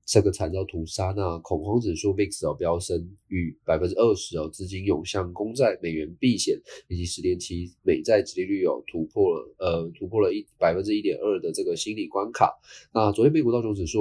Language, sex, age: Chinese, male, 20-39